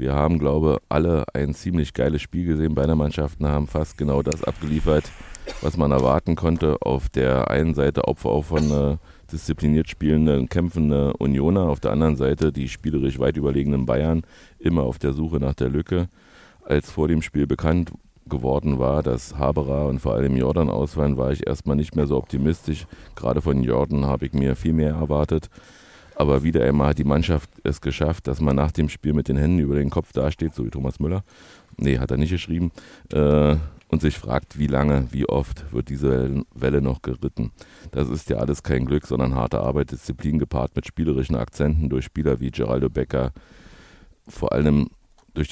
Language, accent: German, German